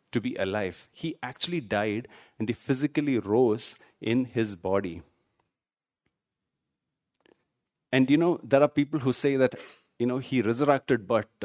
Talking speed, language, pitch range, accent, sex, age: 140 wpm, English, 120-165 Hz, Indian, male, 30-49